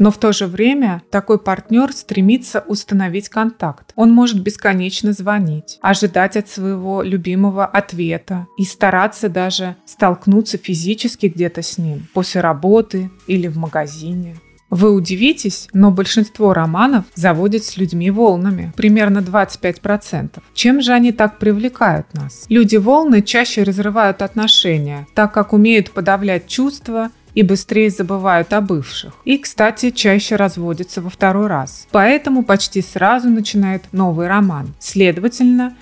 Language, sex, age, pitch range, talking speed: Russian, female, 20-39, 185-220 Hz, 130 wpm